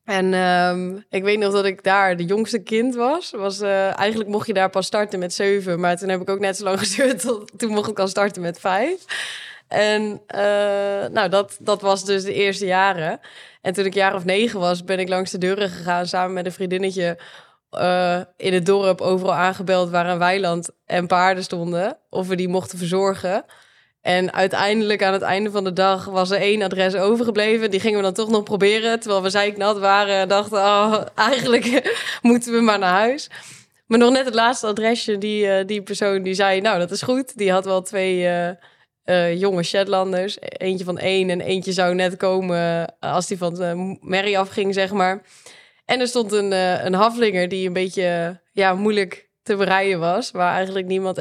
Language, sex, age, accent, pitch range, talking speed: Dutch, female, 20-39, Dutch, 185-210 Hz, 200 wpm